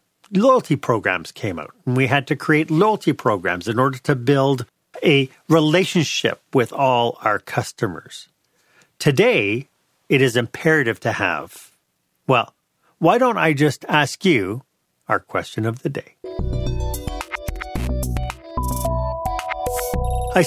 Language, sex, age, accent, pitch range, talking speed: English, male, 40-59, American, 125-170 Hz, 115 wpm